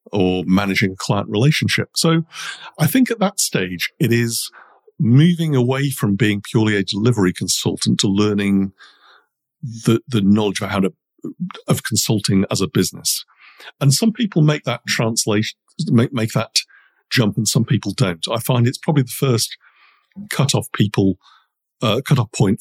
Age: 50-69